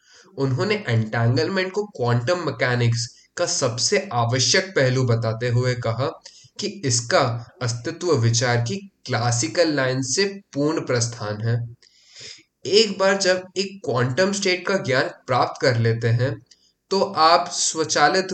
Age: 20-39